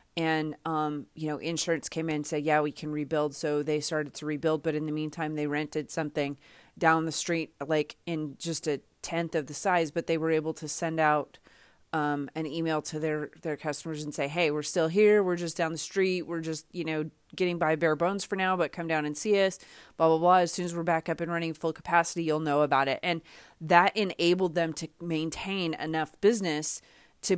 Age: 30-49